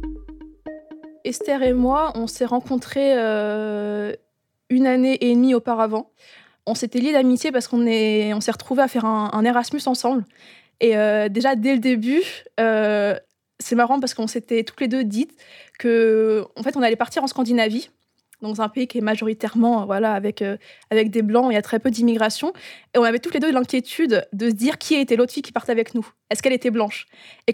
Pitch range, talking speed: 220-255 Hz, 205 wpm